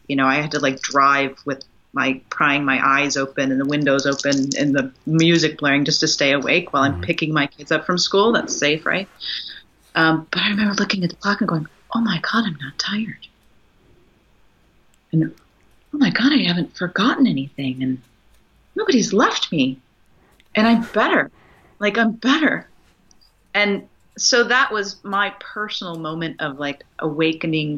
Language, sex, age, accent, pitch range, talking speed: English, female, 30-49, American, 145-200 Hz, 175 wpm